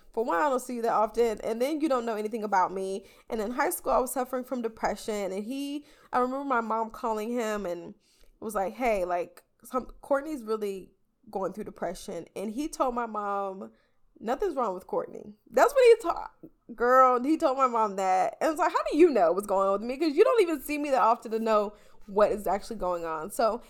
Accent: American